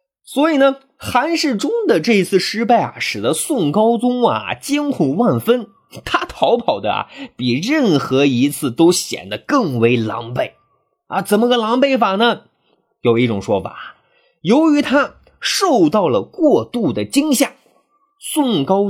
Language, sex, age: Chinese, male, 30-49